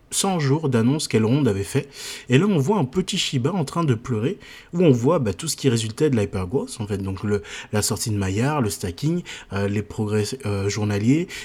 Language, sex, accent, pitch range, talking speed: French, male, French, 105-140 Hz, 230 wpm